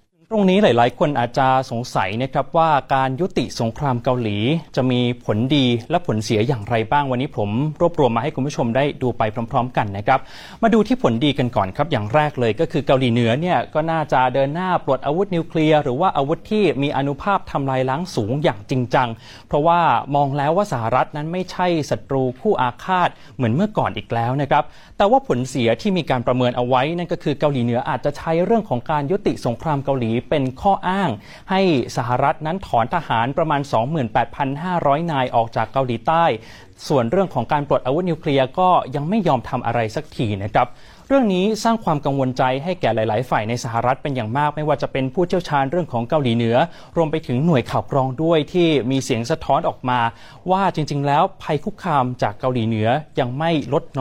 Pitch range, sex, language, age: 125-160 Hz, male, Thai, 30-49